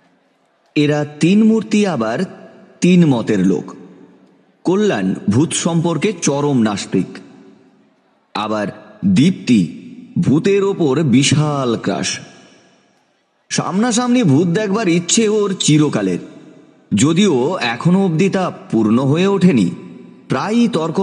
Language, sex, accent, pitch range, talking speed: Bengali, male, native, 120-195 Hz, 65 wpm